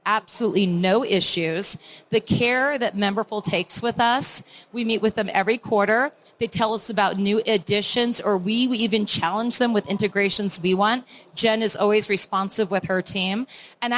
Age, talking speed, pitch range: 40-59, 170 wpm, 195-235 Hz